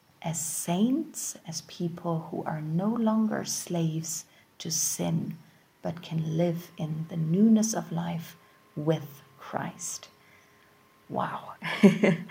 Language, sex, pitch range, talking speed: English, female, 165-195 Hz, 105 wpm